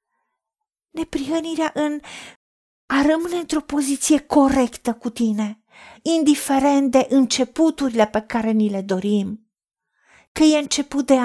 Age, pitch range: 40-59, 240-300 Hz